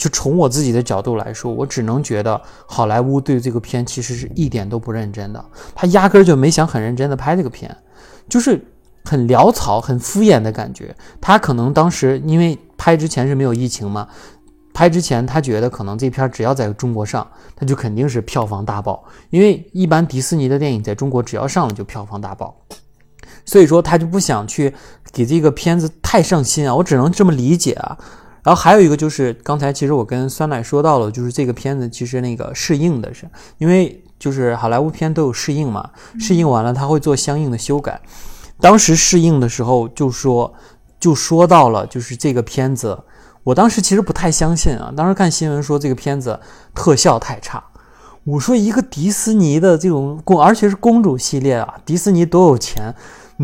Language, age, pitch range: Chinese, 20-39, 120-170 Hz